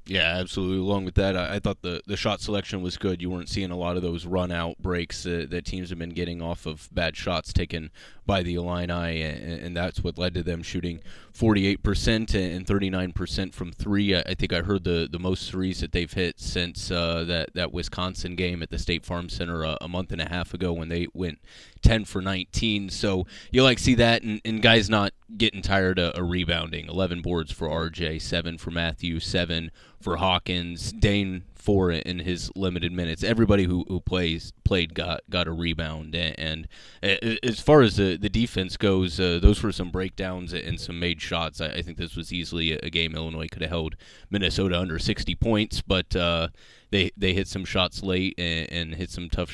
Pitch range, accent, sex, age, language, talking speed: 85-95 Hz, American, male, 20-39, English, 210 wpm